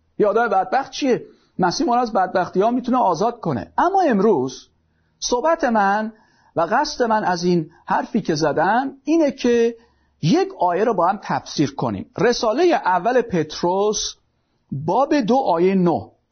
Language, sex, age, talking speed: Persian, male, 50-69, 140 wpm